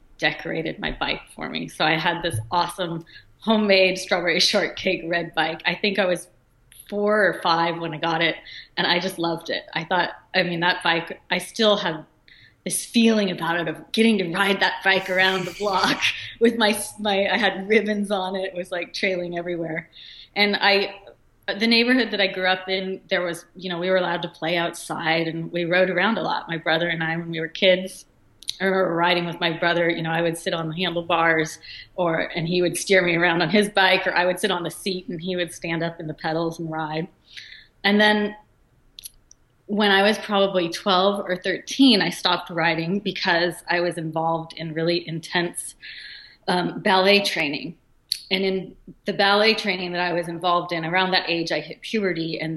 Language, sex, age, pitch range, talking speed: English, female, 30-49, 165-190 Hz, 205 wpm